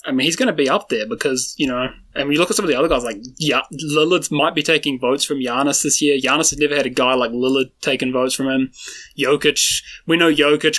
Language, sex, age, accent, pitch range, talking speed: English, male, 20-39, Australian, 130-150 Hz, 260 wpm